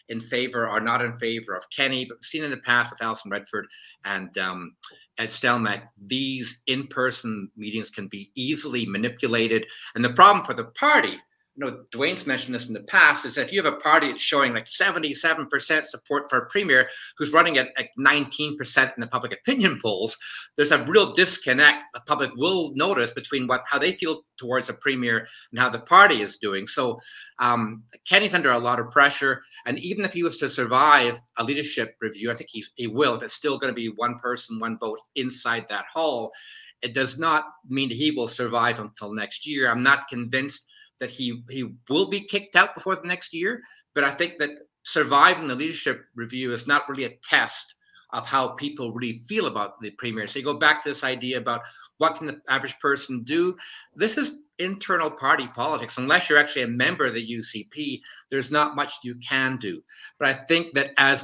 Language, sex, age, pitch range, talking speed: English, male, 50-69, 115-150 Hz, 205 wpm